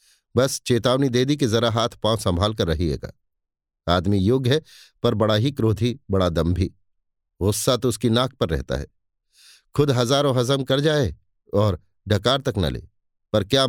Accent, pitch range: native, 95-130 Hz